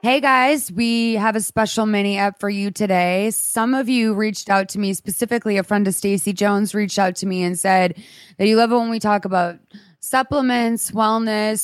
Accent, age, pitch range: American, 20-39, 165-215 Hz